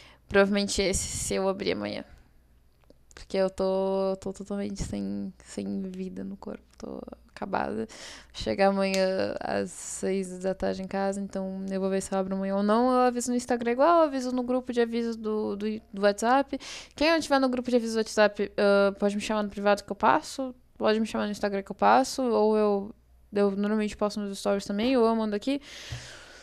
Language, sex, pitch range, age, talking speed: Portuguese, female, 195-255 Hz, 10-29, 200 wpm